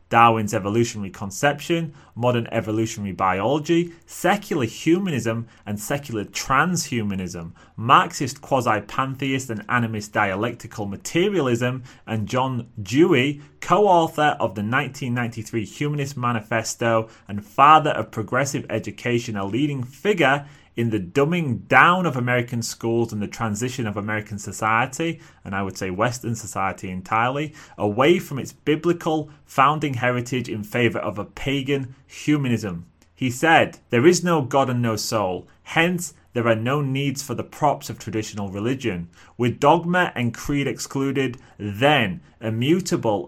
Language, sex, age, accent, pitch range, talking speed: English, male, 30-49, British, 110-140 Hz, 130 wpm